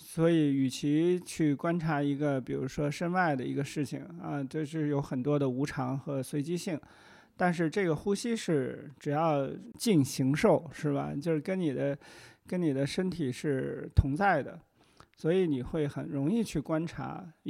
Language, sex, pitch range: Chinese, male, 140-170 Hz